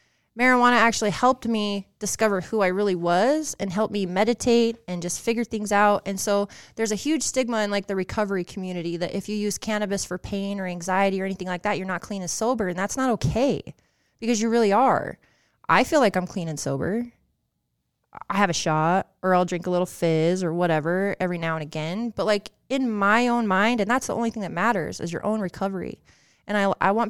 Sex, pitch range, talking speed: female, 180-220 Hz, 220 wpm